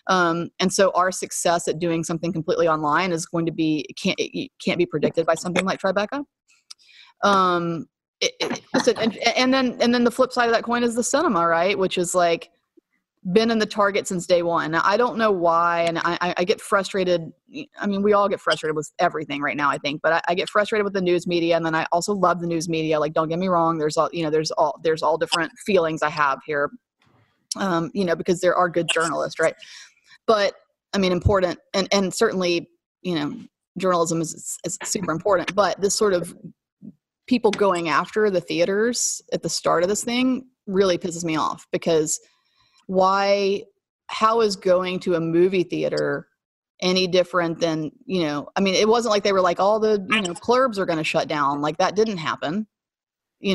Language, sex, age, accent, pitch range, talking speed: English, female, 30-49, American, 170-205 Hz, 215 wpm